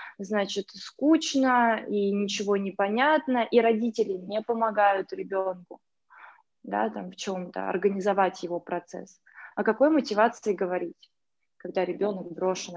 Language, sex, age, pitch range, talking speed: Russian, female, 20-39, 195-255 Hz, 110 wpm